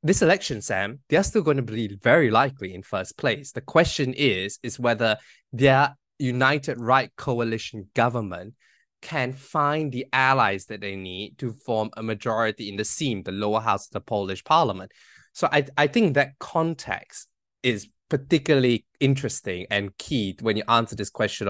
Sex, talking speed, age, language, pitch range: male, 165 wpm, 20-39, English, 115-150 Hz